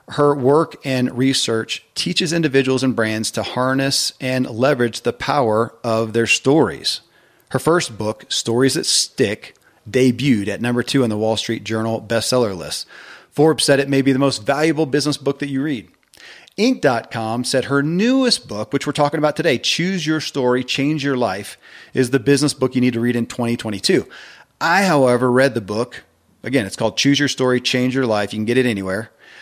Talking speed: 190 wpm